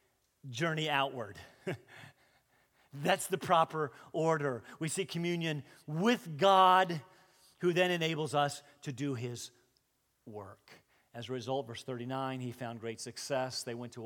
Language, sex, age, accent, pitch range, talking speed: French, male, 40-59, American, 125-180 Hz, 130 wpm